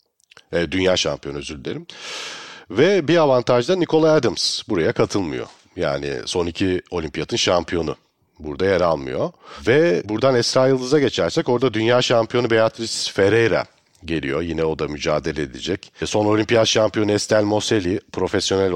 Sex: male